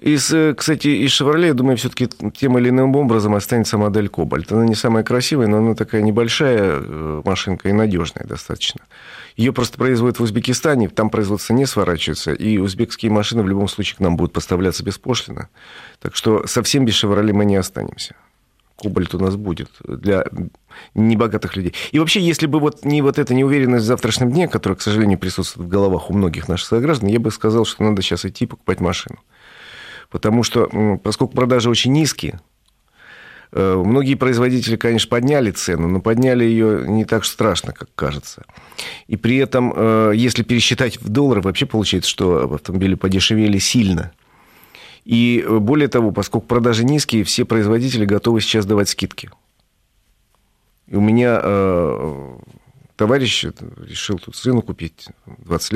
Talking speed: 155 wpm